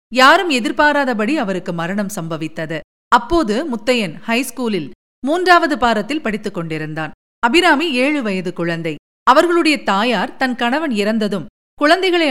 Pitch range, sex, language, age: 200-290 Hz, female, Tamil, 50-69